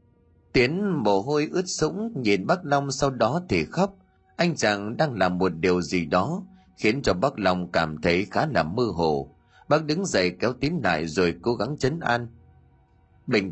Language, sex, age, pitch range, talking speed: Vietnamese, male, 20-39, 90-150 Hz, 185 wpm